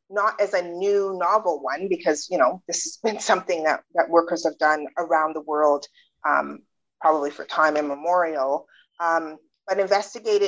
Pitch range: 160-190 Hz